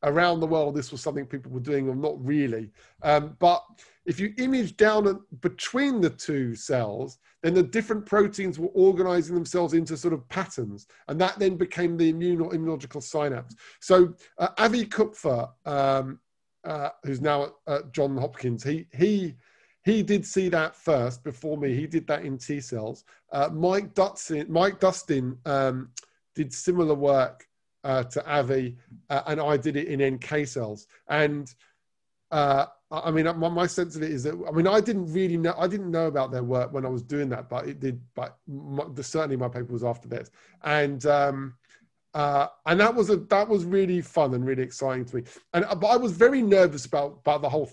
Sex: male